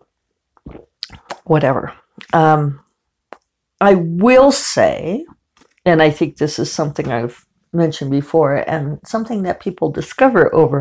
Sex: female